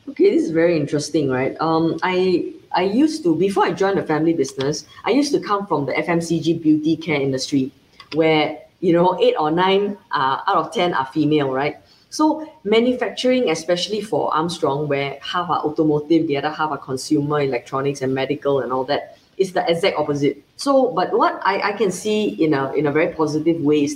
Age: 20-39